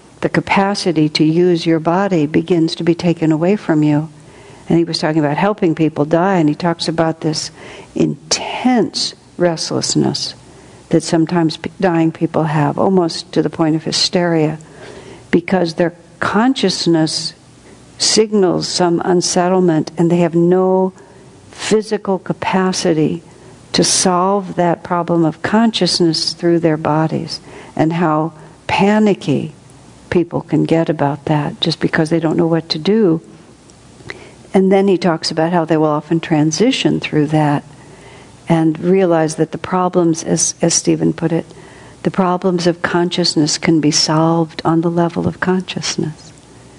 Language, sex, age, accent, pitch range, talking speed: English, female, 60-79, American, 160-180 Hz, 140 wpm